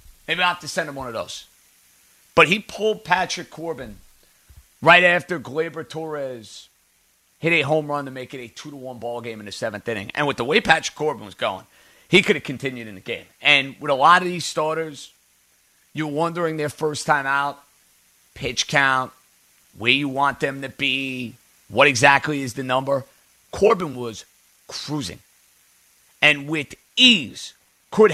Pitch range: 130-160 Hz